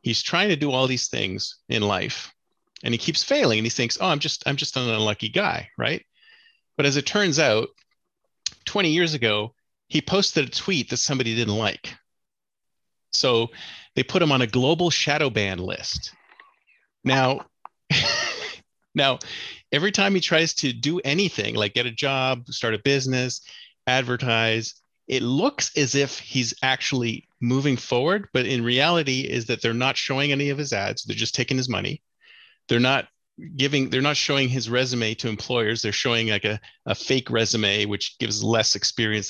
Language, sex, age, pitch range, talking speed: English, male, 30-49, 115-145 Hz, 175 wpm